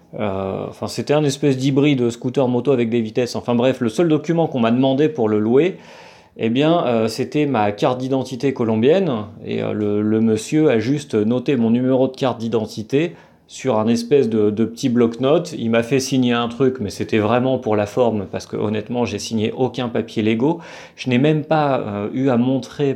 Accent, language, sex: French, French, male